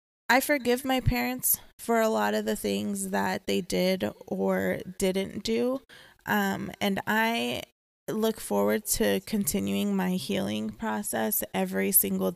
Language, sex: English, female